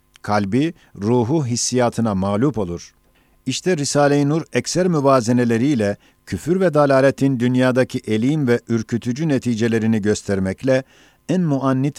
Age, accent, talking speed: 50-69, native, 105 wpm